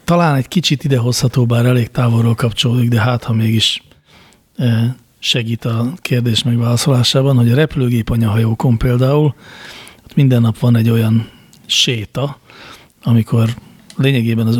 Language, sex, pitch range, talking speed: Hungarian, male, 115-130 Hz, 120 wpm